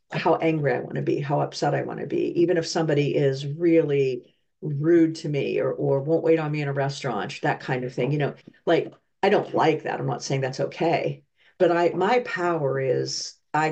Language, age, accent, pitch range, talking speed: English, 50-69, American, 140-170 Hz, 225 wpm